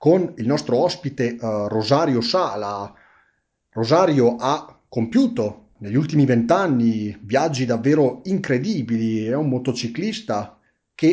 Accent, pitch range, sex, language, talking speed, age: native, 115-140 Hz, male, Italian, 110 wpm, 30-49